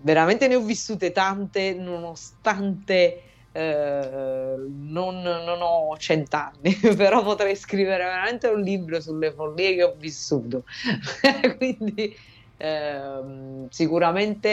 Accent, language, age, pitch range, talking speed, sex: native, Italian, 30-49, 140-175 Hz, 105 wpm, female